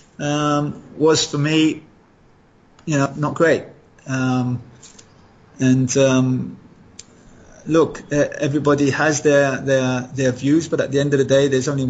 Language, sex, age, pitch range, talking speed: English, male, 30-49, 125-145 Hz, 135 wpm